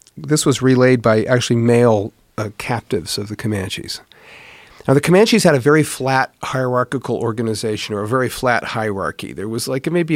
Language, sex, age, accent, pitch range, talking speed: English, male, 40-59, American, 110-140 Hz, 185 wpm